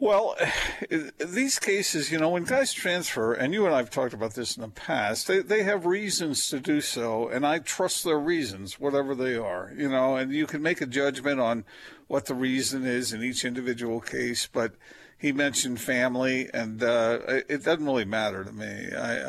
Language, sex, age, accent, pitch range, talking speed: English, male, 50-69, American, 115-140 Hz, 200 wpm